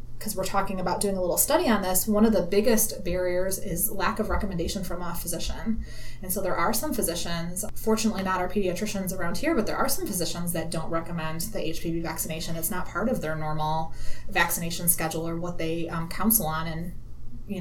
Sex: female